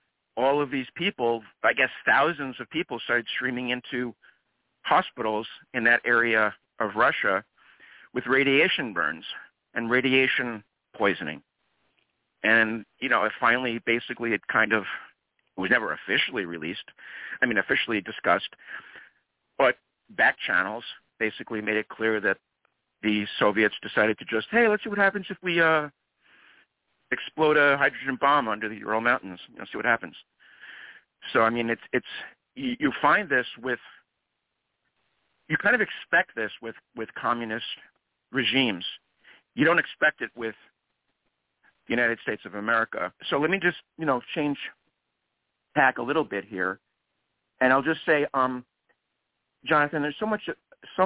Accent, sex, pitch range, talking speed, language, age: American, male, 110-145 Hz, 150 wpm, English, 50-69